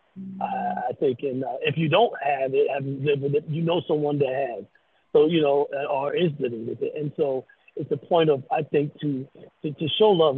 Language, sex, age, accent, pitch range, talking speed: English, male, 50-69, American, 140-170 Hz, 225 wpm